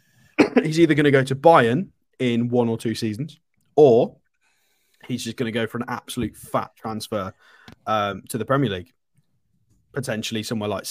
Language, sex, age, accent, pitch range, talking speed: English, male, 20-39, British, 110-130 Hz, 170 wpm